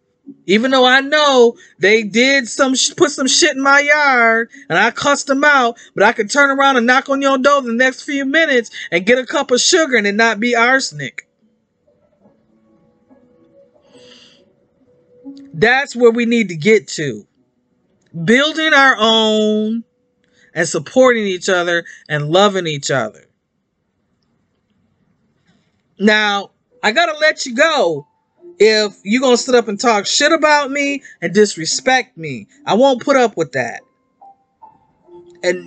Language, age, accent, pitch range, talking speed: English, 40-59, American, 210-275 Hz, 150 wpm